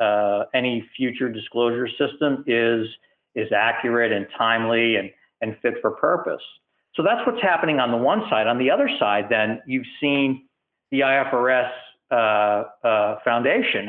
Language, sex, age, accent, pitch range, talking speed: English, male, 50-69, American, 110-140 Hz, 150 wpm